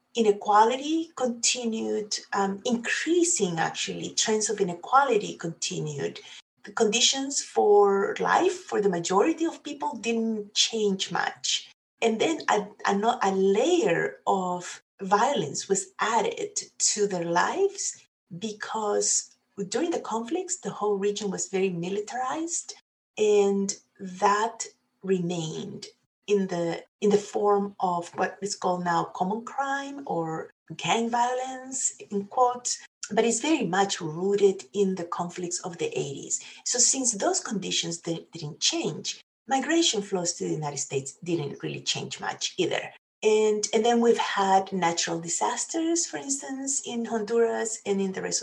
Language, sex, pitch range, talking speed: English, female, 190-265 Hz, 135 wpm